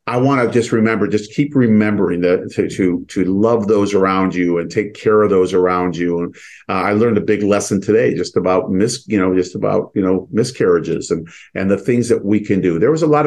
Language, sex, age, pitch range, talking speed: English, male, 50-69, 95-115 Hz, 240 wpm